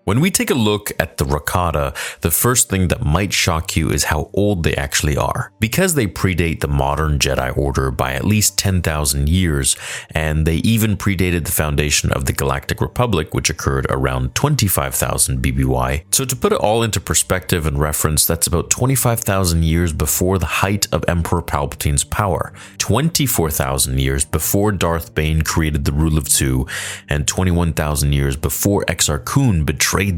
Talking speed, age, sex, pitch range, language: 170 wpm, 30-49, male, 75-105 Hz, English